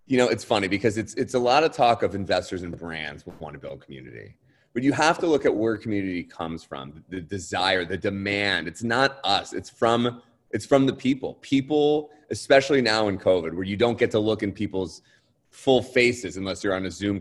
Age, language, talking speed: 30-49, English, 220 wpm